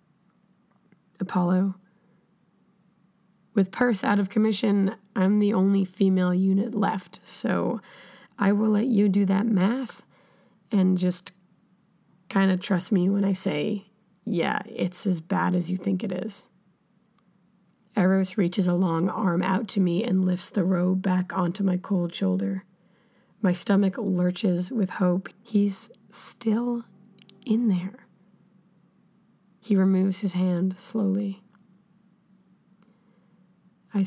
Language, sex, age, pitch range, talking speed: English, female, 20-39, 185-205 Hz, 125 wpm